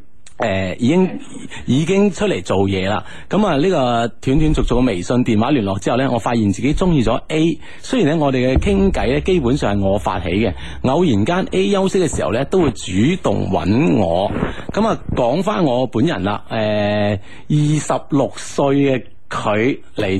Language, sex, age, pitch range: Chinese, male, 30-49, 100-155 Hz